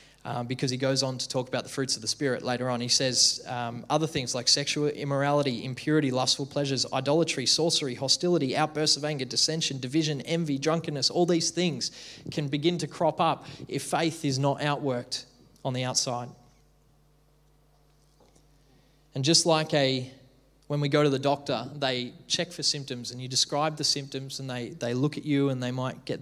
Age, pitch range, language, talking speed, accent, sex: 20-39, 125-150 Hz, English, 185 wpm, Australian, male